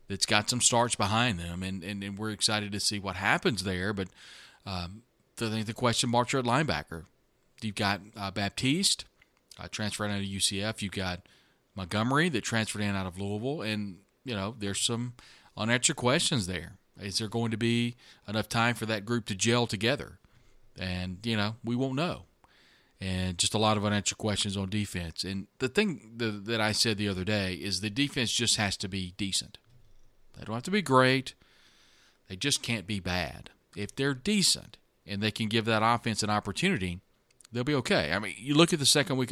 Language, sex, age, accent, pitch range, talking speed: English, male, 40-59, American, 95-120 Hz, 195 wpm